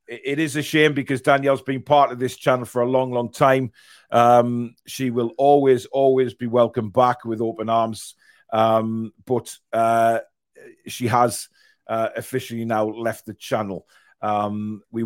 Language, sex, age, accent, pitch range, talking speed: English, male, 40-59, British, 110-130 Hz, 160 wpm